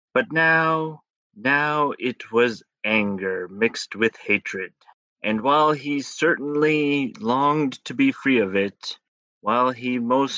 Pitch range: 105-140 Hz